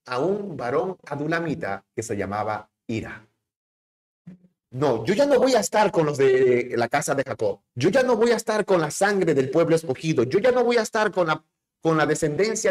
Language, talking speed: Spanish, 210 wpm